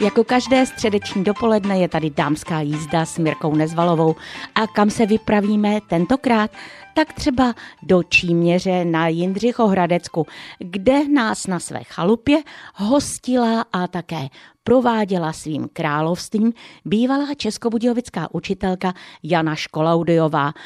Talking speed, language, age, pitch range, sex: 110 wpm, Czech, 50-69, 160-210 Hz, female